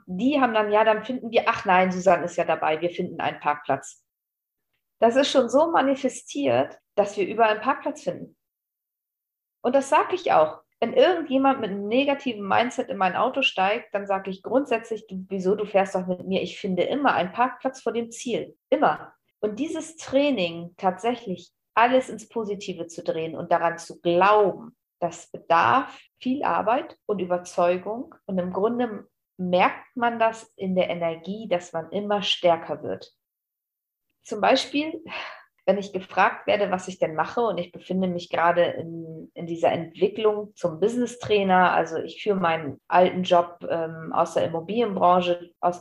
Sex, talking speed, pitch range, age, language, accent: female, 165 wpm, 175-230 Hz, 40-59, German, German